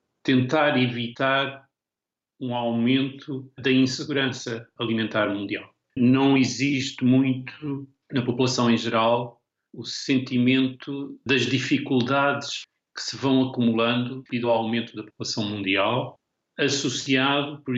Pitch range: 115-130 Hz